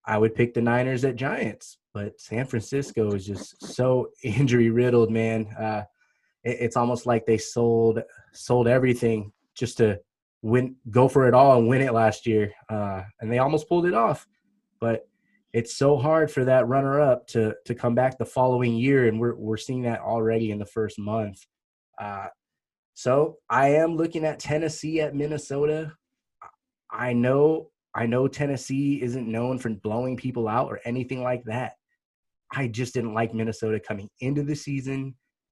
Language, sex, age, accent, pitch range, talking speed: English, male, 20-39, American, 115-145 Hz, 170 wpm